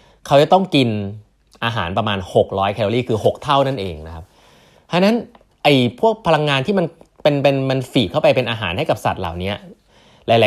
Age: 20-39